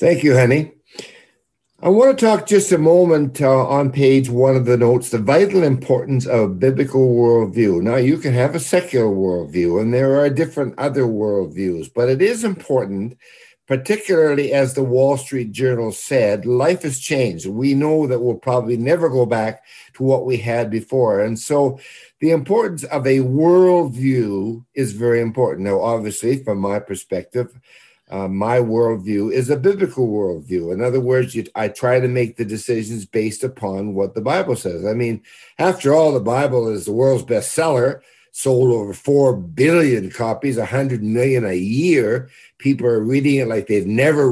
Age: 60-79